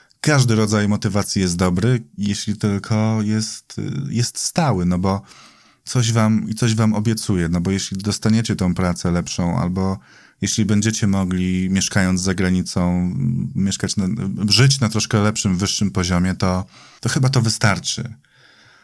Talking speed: 145 wpm